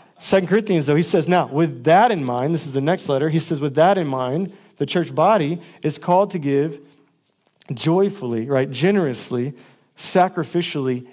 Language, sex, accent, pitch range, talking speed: English, male, American, 150-195 Hz, 175 wpm